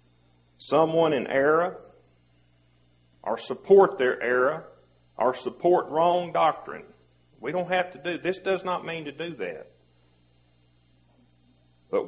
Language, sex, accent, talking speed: English, male, American, 120 wpm